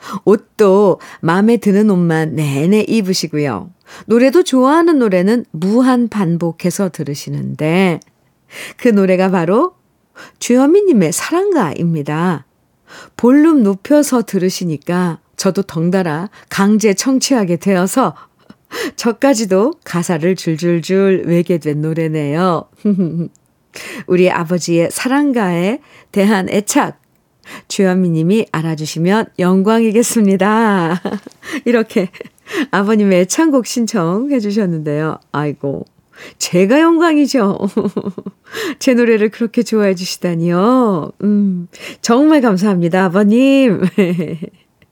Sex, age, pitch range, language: female, 50-69, 180-250 Hz, Korean